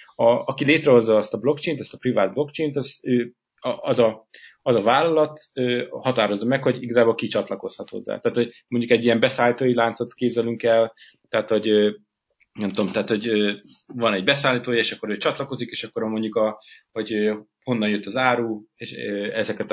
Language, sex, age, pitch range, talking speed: Hungarian, male, 30-49, 105-125 Hz, 165 wpm